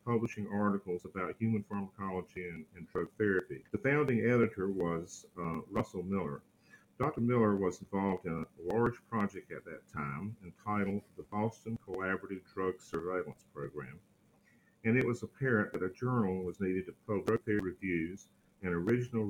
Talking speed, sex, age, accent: 150 wpm, male, 50-69, American